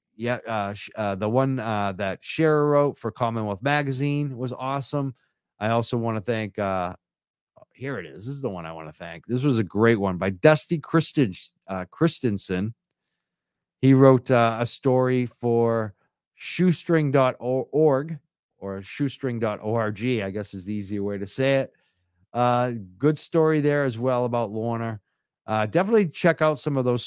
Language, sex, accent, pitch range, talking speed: English, male, American, 105-145 Hz, 160 wpm